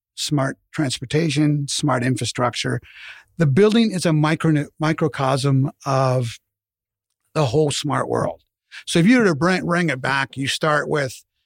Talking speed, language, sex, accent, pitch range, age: 130 wpm, English, male, American, 135-165 Hz, 50-69